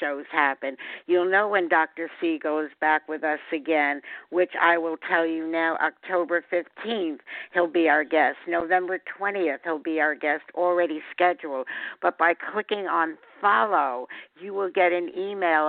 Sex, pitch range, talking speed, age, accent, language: female, 160-180 Hz, 160 wpm, 60-79, American, English